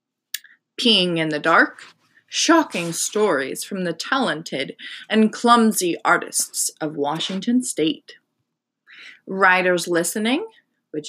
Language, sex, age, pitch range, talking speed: English, female, 20-39, 190-275 Hz, 95 wpm